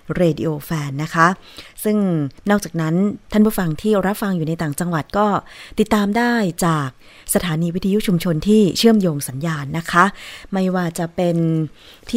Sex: female